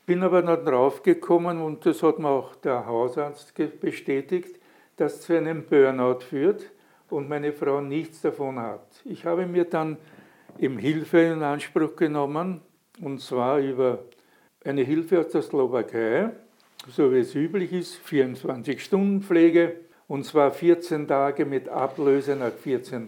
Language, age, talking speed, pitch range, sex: German, 60-79, 140 wpm, 140-180 Hz, male